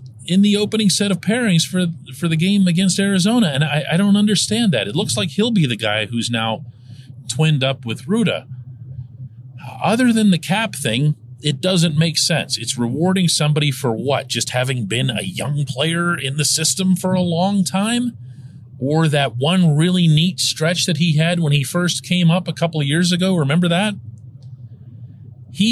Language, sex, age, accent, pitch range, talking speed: English, male, 40-59, American, 130-185 Hz, 185 wpm